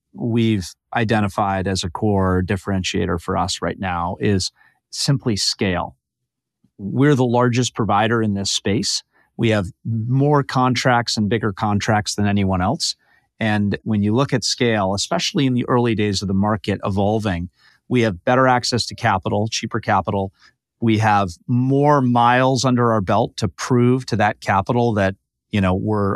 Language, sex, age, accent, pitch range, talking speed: English, male, 30-49, American, 100-125 Hz, 160 wpm